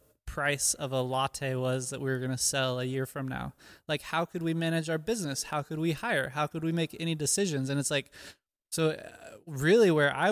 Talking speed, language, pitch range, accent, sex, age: 225 wpm, English, 135-155 Hz, American, male, 20-39